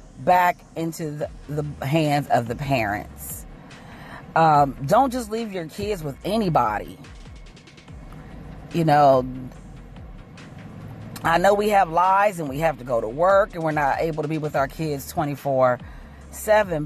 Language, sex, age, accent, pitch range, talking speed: English, female, 40-59, American, 145-190 Hz, 145 wpm